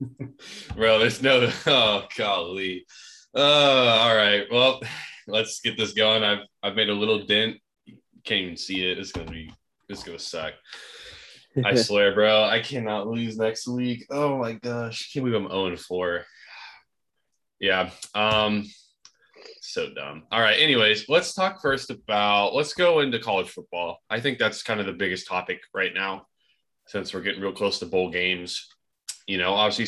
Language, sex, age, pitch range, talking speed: English, male, 20-39, 95-115 Hz, 165 wpm